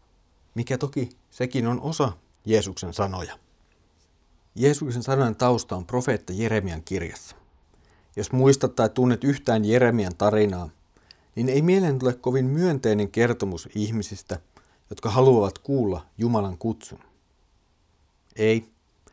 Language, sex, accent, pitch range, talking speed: Finnish, male, native, 95-125 Hz, 110 wpm